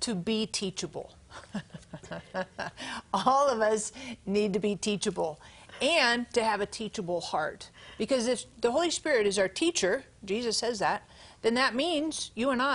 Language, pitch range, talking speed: English, 195-255 Hz, 150 wpm